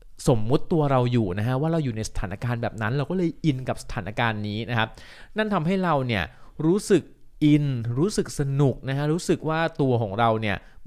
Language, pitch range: Thai, 110-145 Hz